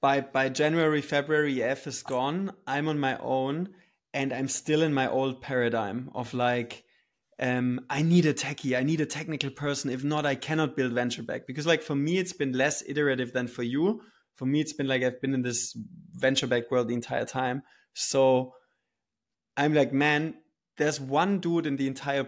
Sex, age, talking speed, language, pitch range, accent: male, 20-39, 195 wpm, English, 125-150 Hz, German